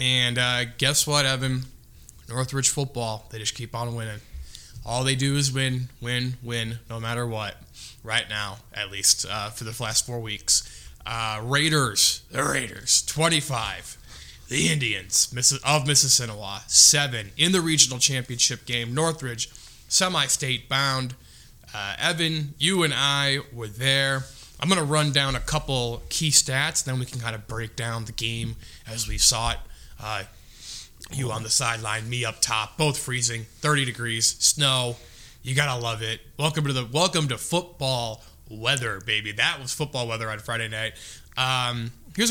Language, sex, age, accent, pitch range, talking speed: English, male, 20-39, American, 115-135 Hz, 160 wpm